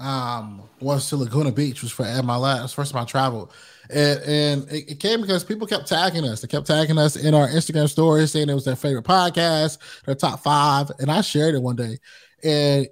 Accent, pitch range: American, 130-160 Hz